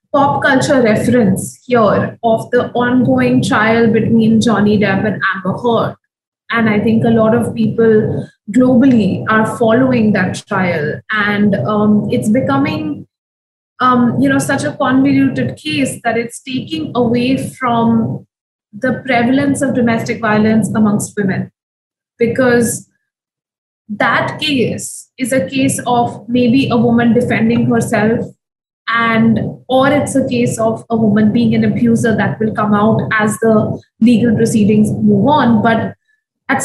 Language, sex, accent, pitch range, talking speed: English, female, Indian, 220-255 Hz, 140 wpm